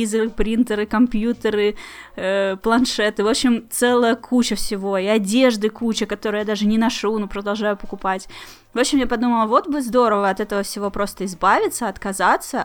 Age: 10-29